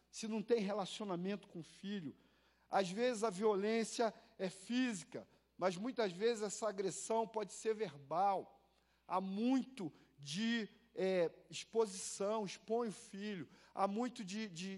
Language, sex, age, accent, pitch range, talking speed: Portuguese, male, 40-59, Brazilian, 190-225 Hz, 135 wpm